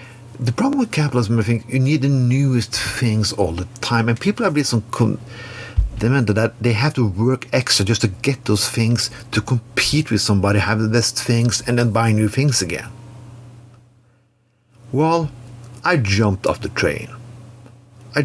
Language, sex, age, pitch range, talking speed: English, male, 50-69, 105-125 Hz, 170 wpm